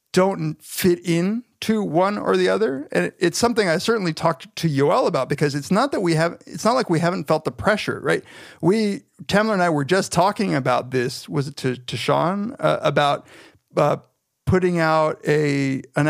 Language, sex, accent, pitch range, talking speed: English, male, American, 130-175 Hz, 200 wpm